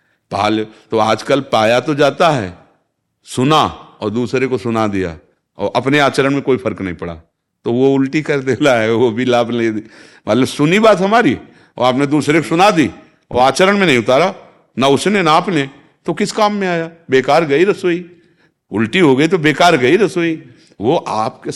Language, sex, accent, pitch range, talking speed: Hindi, male, native, 100-140 Hz, 185 wpm